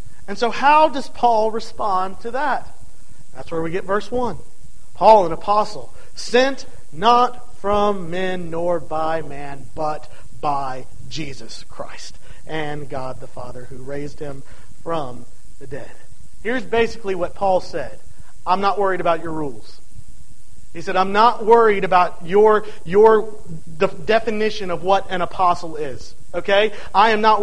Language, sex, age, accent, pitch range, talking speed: English, male, 40-59, American, 175-235 Hz, 150 wpm